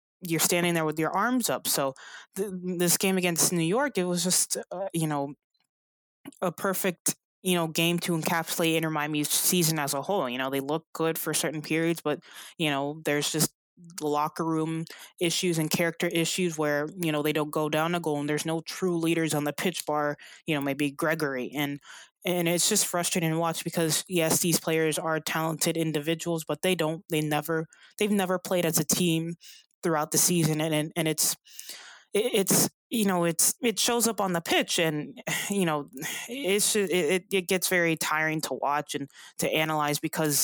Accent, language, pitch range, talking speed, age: American, English, 150-180 Hz, 195 wpm, 20-39